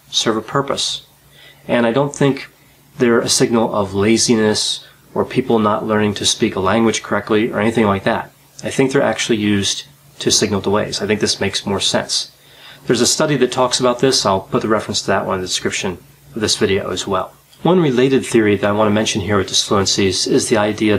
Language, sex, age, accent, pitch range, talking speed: English, male, 30-49, American, 105-130 Hz, 215 wpm